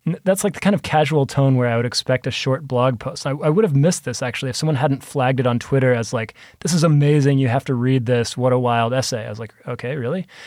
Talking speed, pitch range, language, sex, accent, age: 275 wpm, 125-150 Hz, English, male, American, 20-39